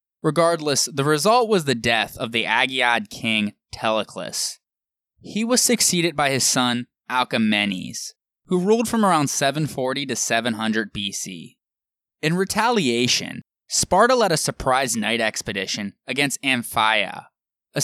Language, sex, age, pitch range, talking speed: English, male, 20-39, 105-150 Hz, 125 wpm